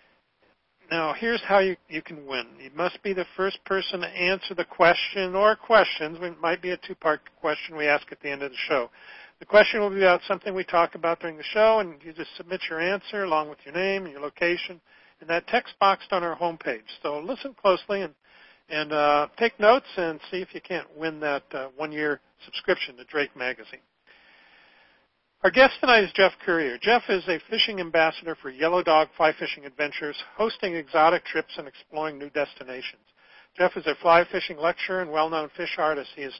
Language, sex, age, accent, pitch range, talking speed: English, male, 50-69, American, 150-185 Hz, 205 wpm